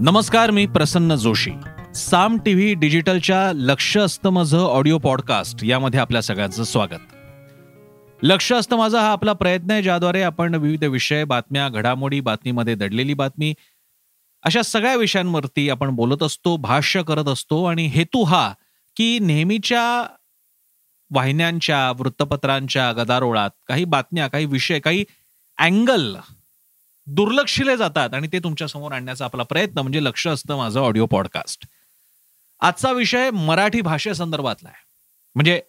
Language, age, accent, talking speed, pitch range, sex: Marathi, 30-49, native, 105 wpm, 140-185 Hz, male